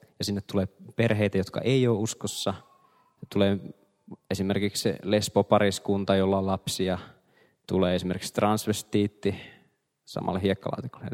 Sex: male